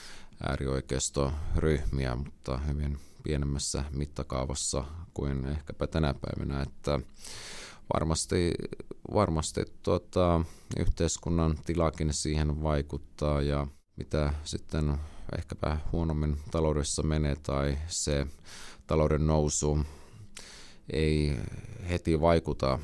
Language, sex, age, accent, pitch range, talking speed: Finnish, male, 30-49, native, 70-80 Hz, 75 wpm